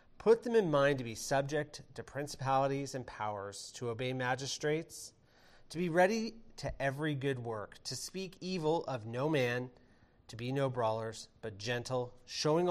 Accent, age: American, 30-49